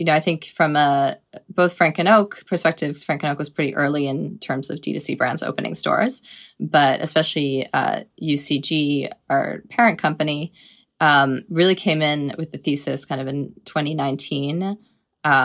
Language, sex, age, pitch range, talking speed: English, female, 20-39, 140-165 Hz, 160 wpm